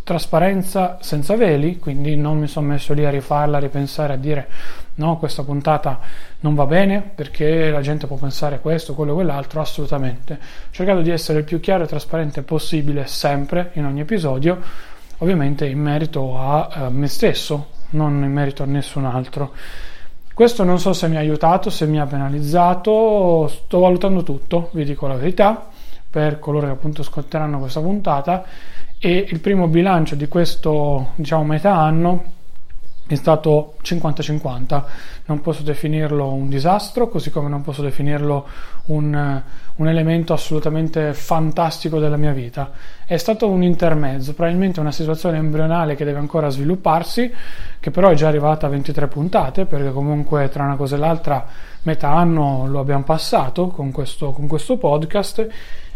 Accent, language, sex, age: native, Italian, male, 30-49